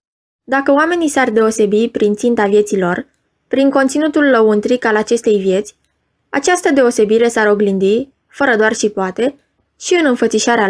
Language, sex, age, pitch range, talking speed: Romanian, female, 20-39, 215-275 Hz, 140 wpm